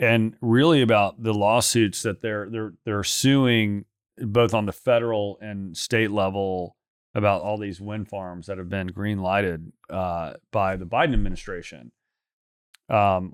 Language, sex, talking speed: English, male, 145 wpm